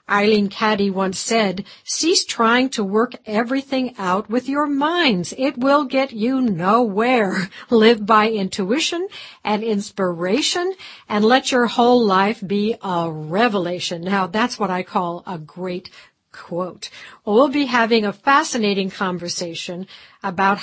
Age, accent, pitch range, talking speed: 60-79, American, 190-245 Hz, 135 wpm